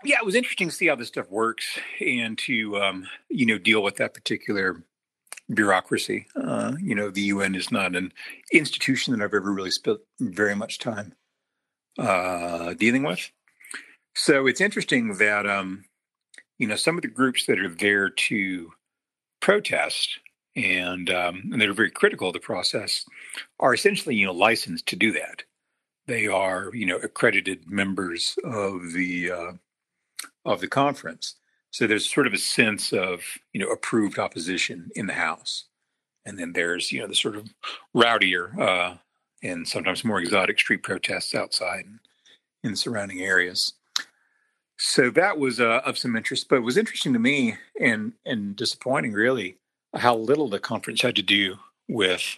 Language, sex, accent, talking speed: English, male, American, 170 wpm